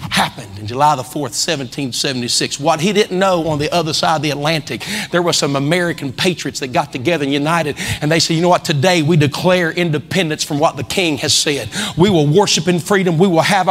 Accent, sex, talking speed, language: American, male, 225 wpm, English